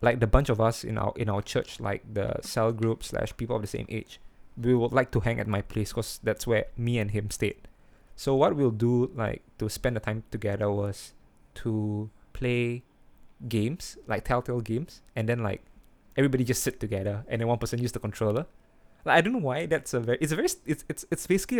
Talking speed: 225 wpm